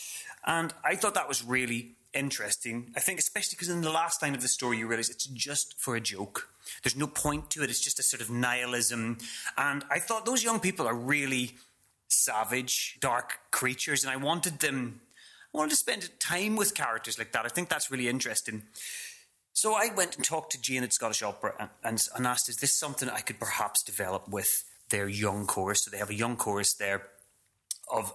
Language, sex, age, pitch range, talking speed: English, male, 30-49, 110-150 Hz, 205 wpm